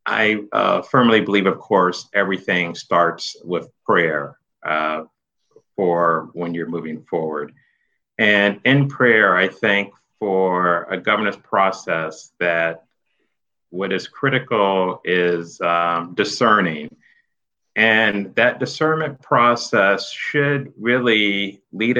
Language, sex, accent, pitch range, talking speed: English, male, American, 85-105 Hz, 105 wpm